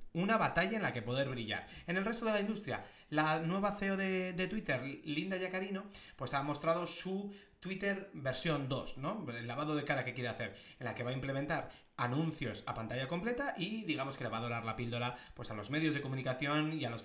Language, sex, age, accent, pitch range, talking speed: Spanish, male, 30-49, Spanish, 125-170 Hz, 225 wpm